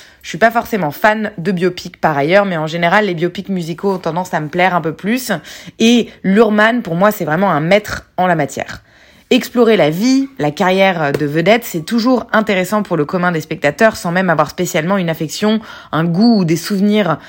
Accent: French